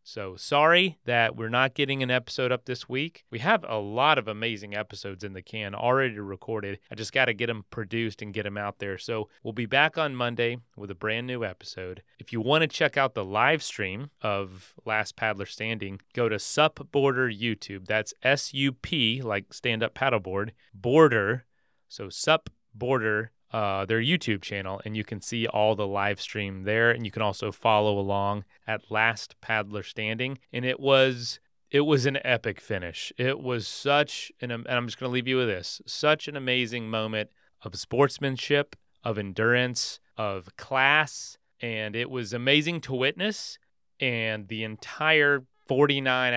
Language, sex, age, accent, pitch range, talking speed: English, male, 30-49, American, 105-130 Hz, 175 wpm